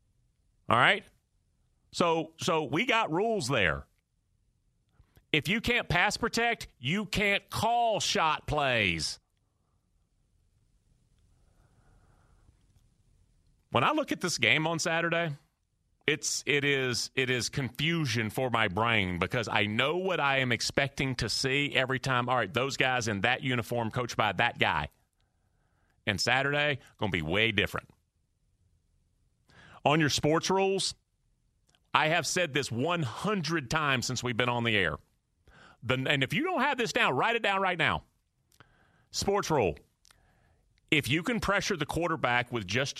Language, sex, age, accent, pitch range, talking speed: English, male, 40-59, American, 110-160 Hz, 140 wpm